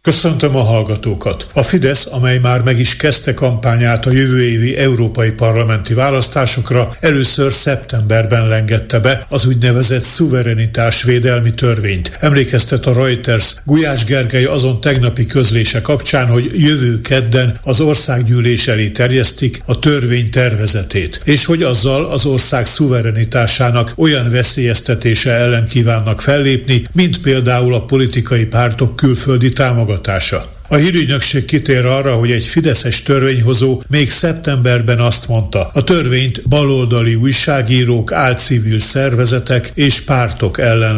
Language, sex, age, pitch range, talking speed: Hungarian, male, 60-79, 115-135 Hz, 125 wpm